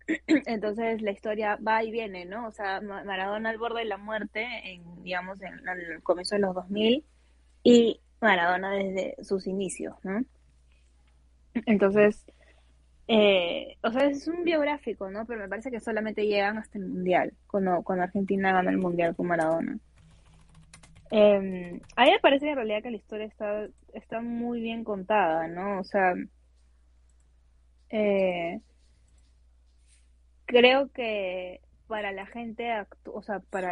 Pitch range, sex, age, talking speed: 185-230 Hz, female, 20-39, 150 wpm